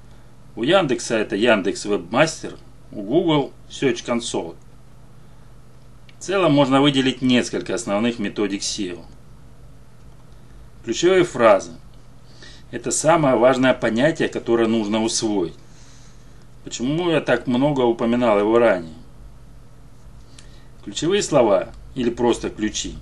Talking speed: 100 wpm